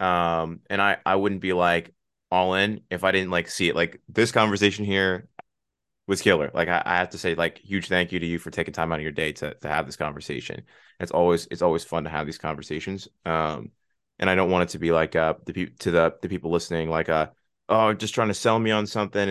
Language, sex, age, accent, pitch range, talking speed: English, male, 20-39, American, 85-95 Hz, 250 wpm